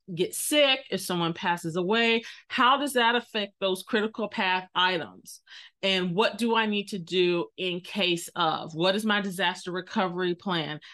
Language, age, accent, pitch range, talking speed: English, 30-49, American, 185-235 Hz, 165 wpm